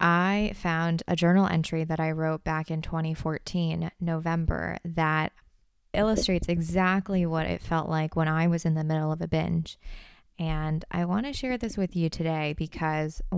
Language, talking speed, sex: English, 170 wpm, female